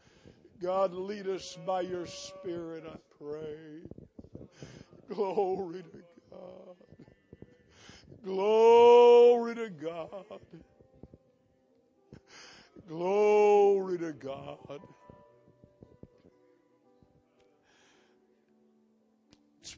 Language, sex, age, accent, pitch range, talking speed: English, male, 60-79, American, 130-165 Hz, 60 wpm